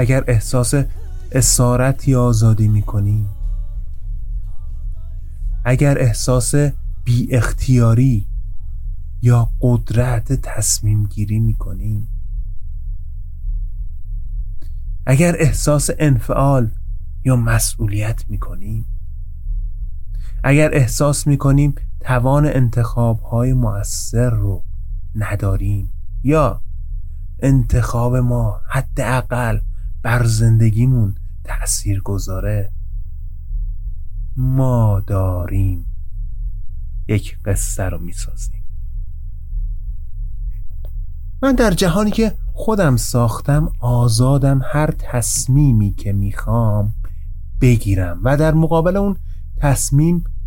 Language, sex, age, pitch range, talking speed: Persian, male, 30-49, 95-130 Hz, 75 wpm